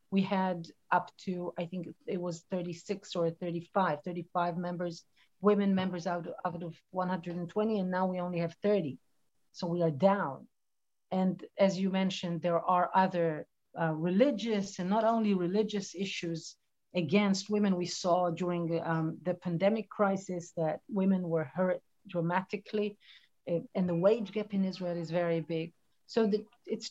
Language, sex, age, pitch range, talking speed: English, female, 50-69, 175-210 Hz, 150 wpm